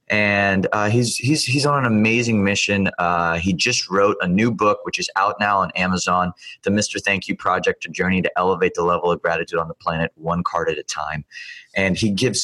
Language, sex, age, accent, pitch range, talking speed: English, male, 20-39, American, 100-125 Hz, 220 wpm